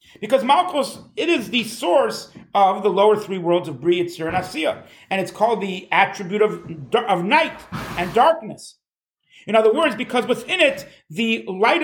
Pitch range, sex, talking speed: 185-260 Hz, male, 170 wpm